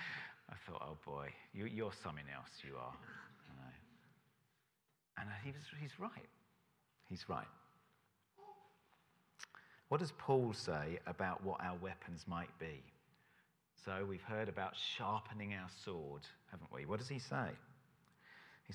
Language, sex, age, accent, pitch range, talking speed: English, male, 40-59, British, 110-170 Hz, 140 wpm